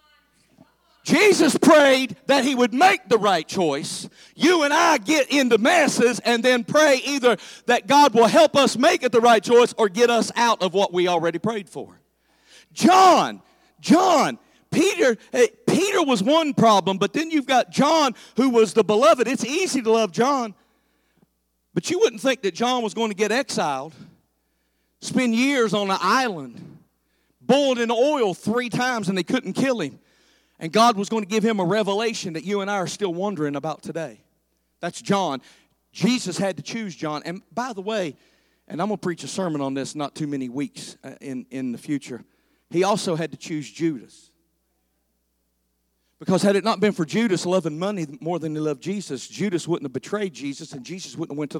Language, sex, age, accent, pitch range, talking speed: English, male, 50-69, American, 160-245 Hz, 190 wpm